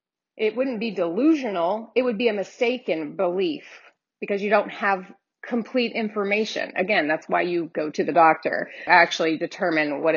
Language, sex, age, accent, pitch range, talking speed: English, female, 30-49, American, 205-265 Hz, 165 wpm